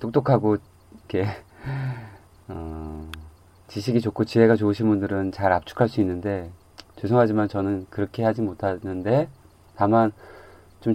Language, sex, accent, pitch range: Korean, male, native, 95-120 Hz